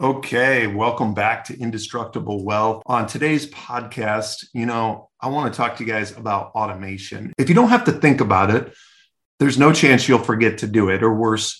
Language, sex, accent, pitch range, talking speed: English, male, American, 110-135 Hz, 195 wpm